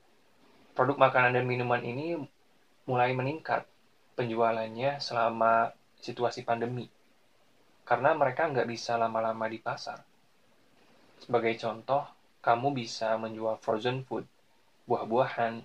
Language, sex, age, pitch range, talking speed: Indonesian, male, 20-39, 115-135 Hz, 100 wpm